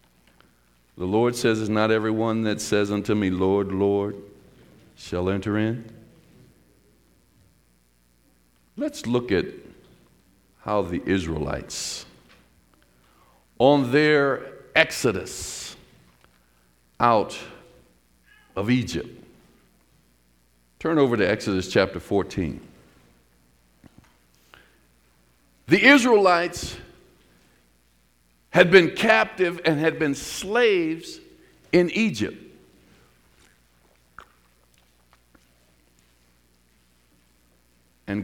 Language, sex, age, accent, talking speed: English, male, 50-69, American, 70 wpm